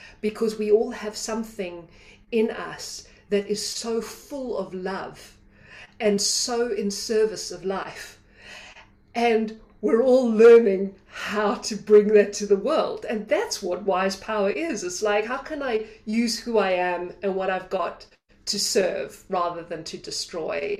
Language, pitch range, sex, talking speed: English, 185-235 Hz, female, 160 wpm